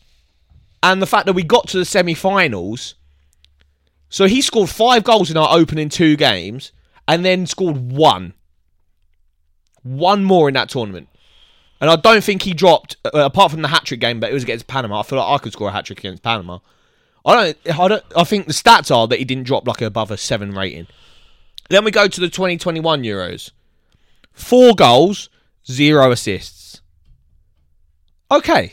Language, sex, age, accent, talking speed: English, male, 20-39, British, 180 wpm